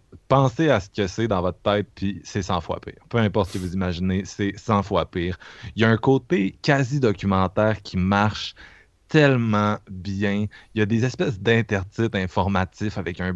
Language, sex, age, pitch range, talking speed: French, male, 20-39, 90-105 Hz, 190 wpm